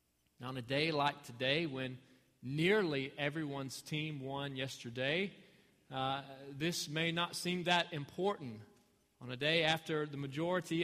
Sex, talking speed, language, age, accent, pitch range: male, 140 wpm, English, 40-59, American, 140-180 Hz